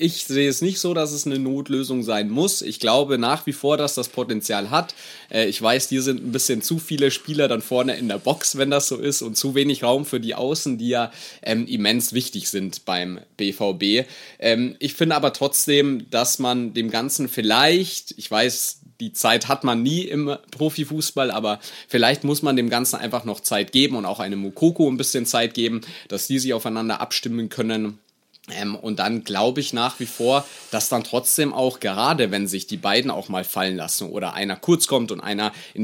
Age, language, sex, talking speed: 30-49, German, male, 205 wpm